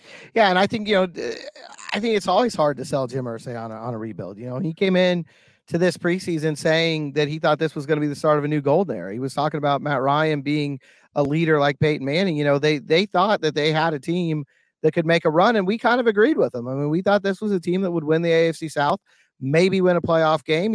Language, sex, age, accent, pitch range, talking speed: English, male, 40-59, American, 150-170 Hz, 280 wpm